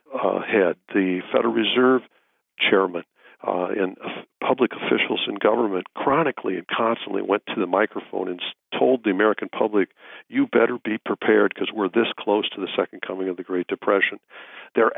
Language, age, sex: English, 50-69, male